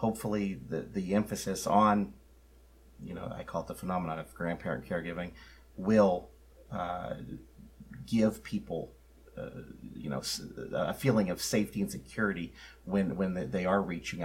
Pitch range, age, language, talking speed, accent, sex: 65-100 Hz, 40-59, English, 140 wpm, American, male